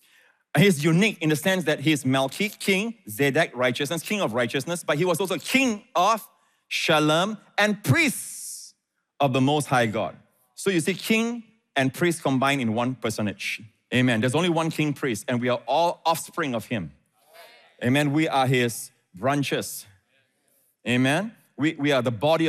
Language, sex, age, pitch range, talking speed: English, male, 30-49, 135-190 Hz, 165 wpm